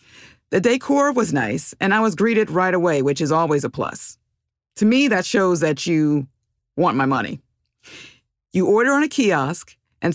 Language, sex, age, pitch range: English, female, 50-69, 155-215 Hz